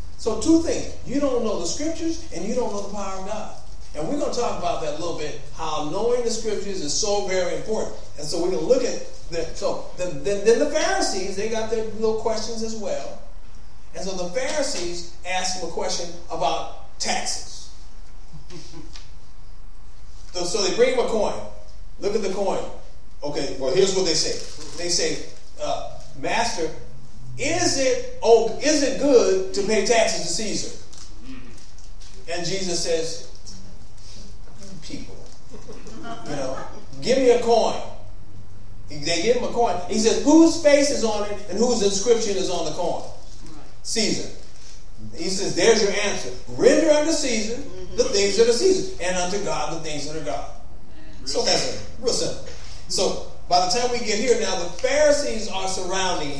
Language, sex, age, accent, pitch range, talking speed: English, male, 40-59, American, 160-245 Hz, 175 wpm